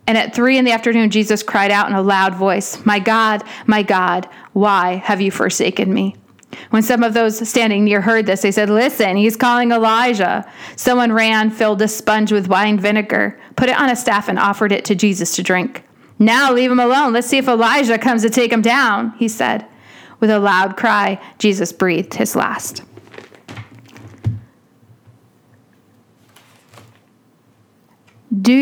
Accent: American